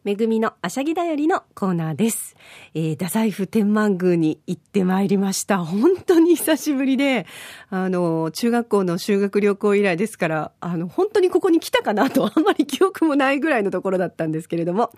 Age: 40-59